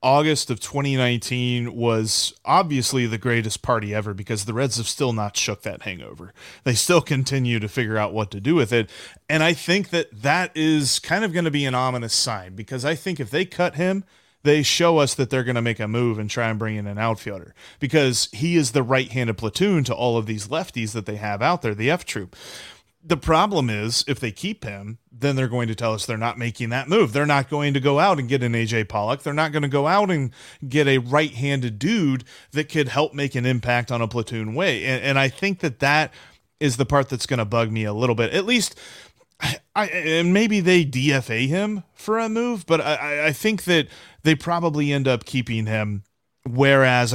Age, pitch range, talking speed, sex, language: 30-49, 115-155 Hz, 225 wpm, male, English